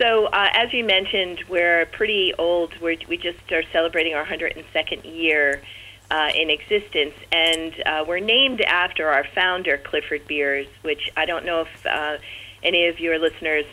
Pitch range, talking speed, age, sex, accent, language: 150-180 Hz, 160 wpm, 40-59, female, American, English